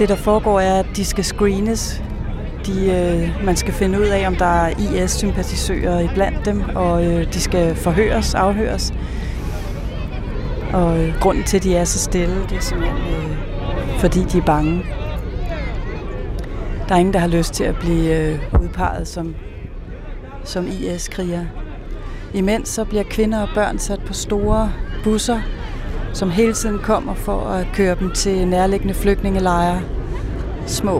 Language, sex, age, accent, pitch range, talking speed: Danish, female, 30-49, native, 170-200 Hz, 155 wpm